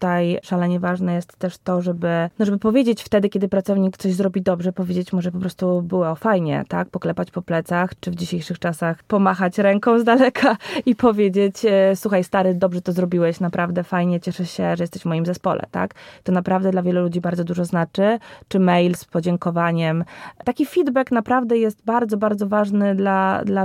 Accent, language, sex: native, Polish, female